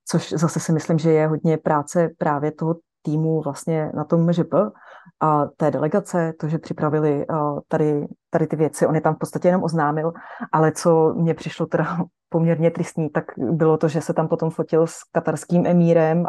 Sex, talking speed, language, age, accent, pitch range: female, 190 wpm, Czech, 30-49, native, 155-170 Hz